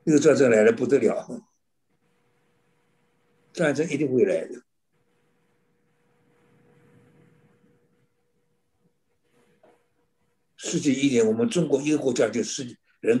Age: 60-79